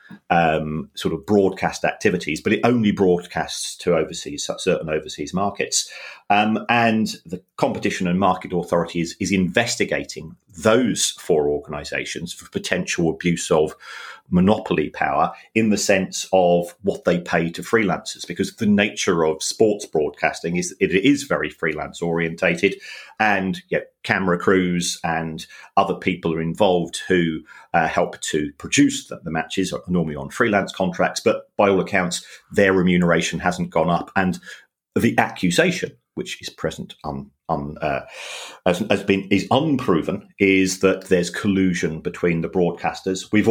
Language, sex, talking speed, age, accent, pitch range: English, male, 145 wpm, 40-59, British, 85-100 Hz